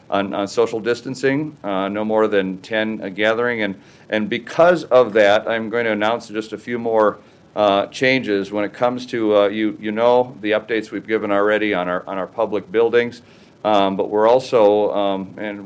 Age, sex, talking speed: 50-69, male, 195 wpm